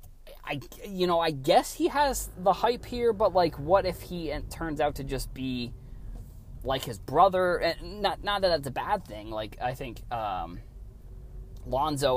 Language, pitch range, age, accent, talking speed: English, 115-165 Hz, 20-39, American, 180 wpm